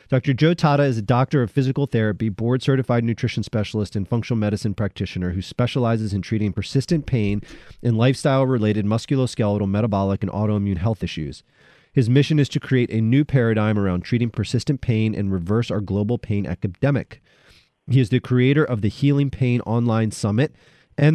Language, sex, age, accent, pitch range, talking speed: English, male, 30-49, American, 105-130 Hz, 165 wpm